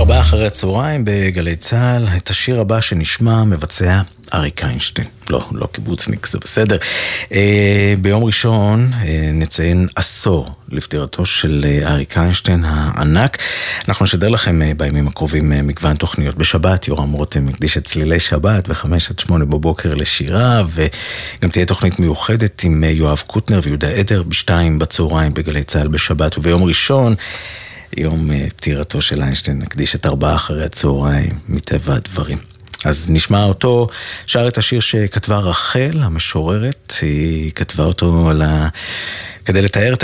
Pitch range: 75-105 Hz